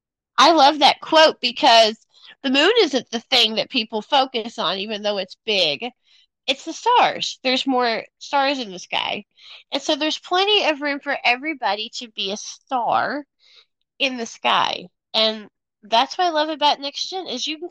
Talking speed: 180 wpm